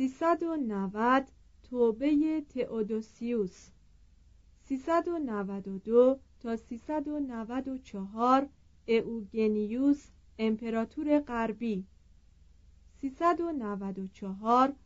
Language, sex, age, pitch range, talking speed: Persian, female, 40-59, 195-270 Hz, 40 wpm